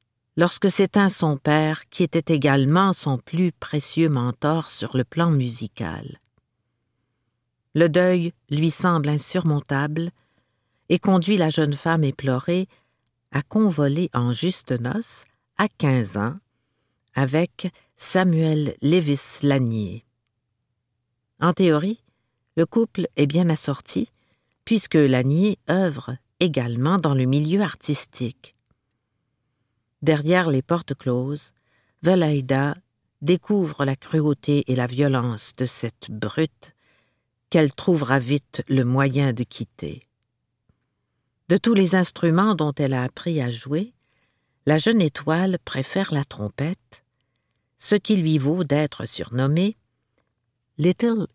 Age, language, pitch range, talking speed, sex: 50-69, French, 120-165 Hz, 115 wpm, female